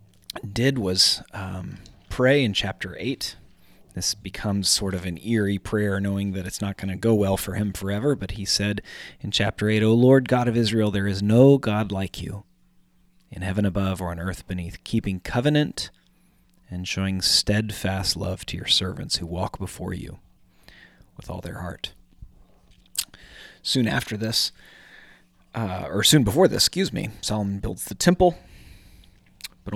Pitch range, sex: 95-115 Hz, male